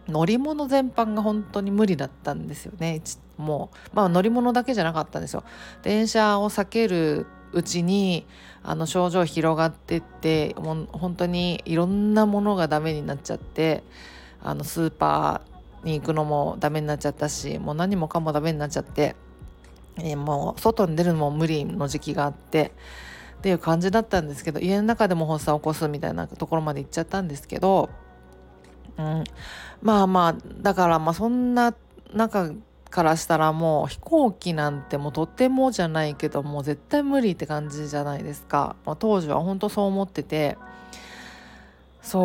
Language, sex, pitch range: Japanese, female, 150-195 Hz